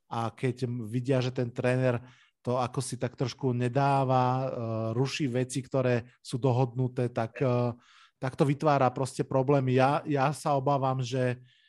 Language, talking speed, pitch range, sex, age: Slovak, 145 wpm, 120-140 Hz, male, 20-39